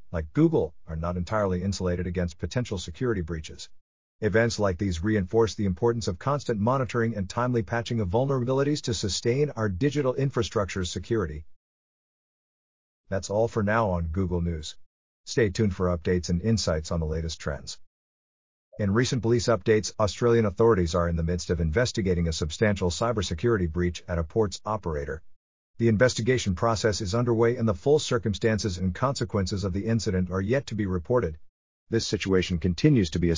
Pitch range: 90-115 Hz